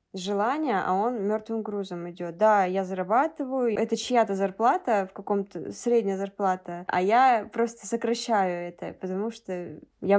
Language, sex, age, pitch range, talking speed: Russian, female, 20-39, 200-240 Hz, 140 wpm